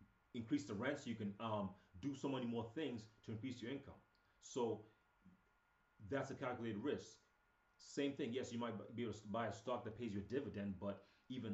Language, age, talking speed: English, 30-49, 200 wpm